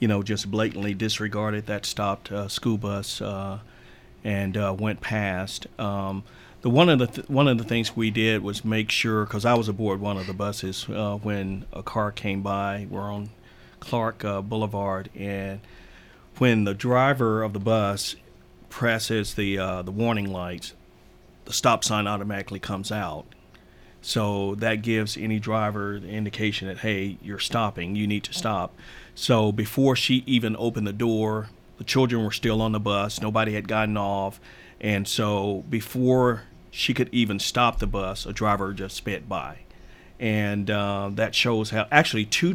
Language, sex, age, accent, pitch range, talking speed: English, male, 40-59, American, 100-115 Hz, 170 wpm